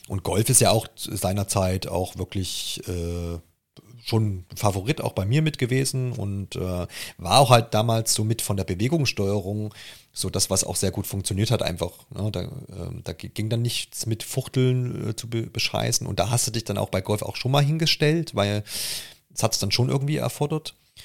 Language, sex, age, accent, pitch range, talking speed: German, male, 40-59, German, 100-120 Hz, 190 wpm